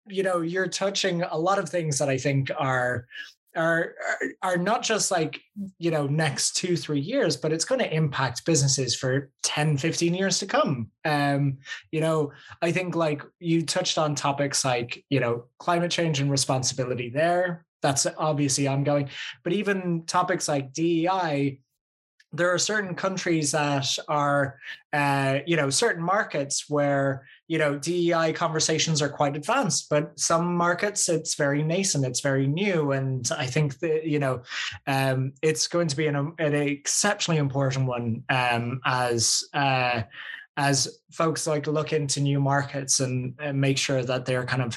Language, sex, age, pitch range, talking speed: English, male, 20-39, 135-170 Hz, 170 wpm